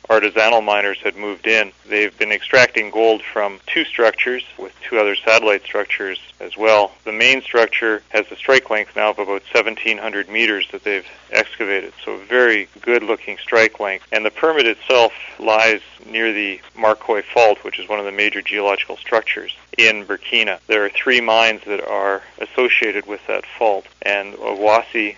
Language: English